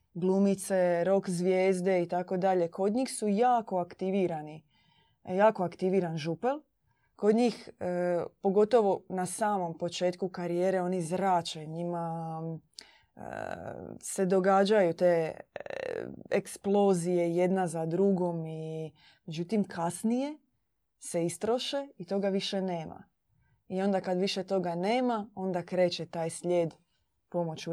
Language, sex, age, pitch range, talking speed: Croatian, female, 20-39, 170-195 Hz, 110 wpm